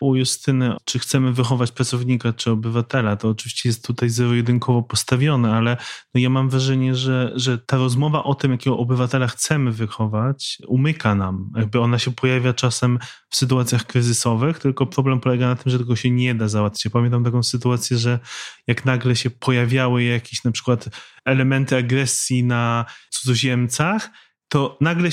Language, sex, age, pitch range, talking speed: Polish, male, 20-39, 120-145 Hz, 160 wpm